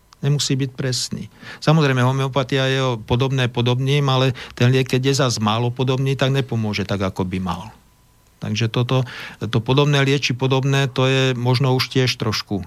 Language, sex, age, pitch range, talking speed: Slovak, male, 50-69, 105-130 Hz, 155 wpm